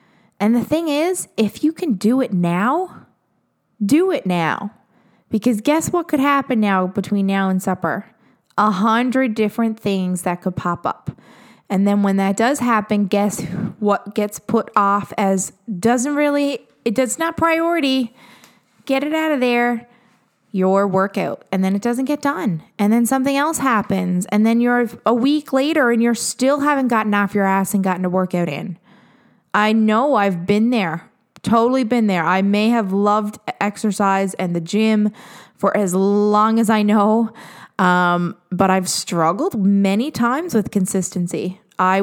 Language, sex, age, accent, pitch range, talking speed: English, female, 20-39, American, 190-235 Hz, 165 wpm